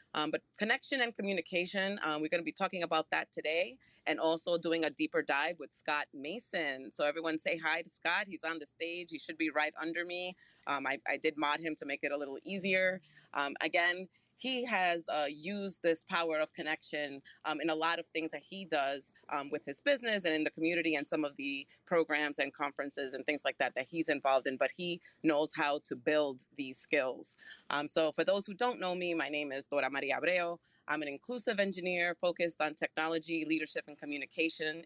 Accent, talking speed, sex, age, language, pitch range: American, 215 wpm, female, 30-49, English, 150-175 Hz